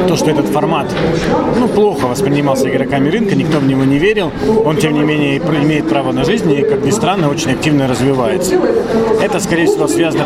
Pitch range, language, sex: 140-185 Hz, Russian, male